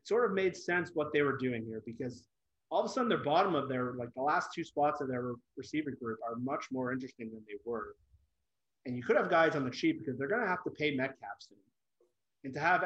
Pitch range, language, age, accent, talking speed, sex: 115-140 Hz, English, 30-49, American, 250 wpm, male